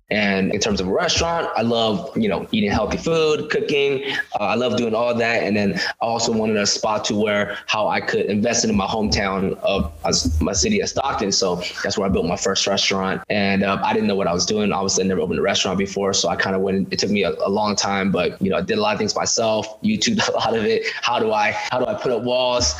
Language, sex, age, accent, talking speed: English, male, 20-39, American, 265 wpm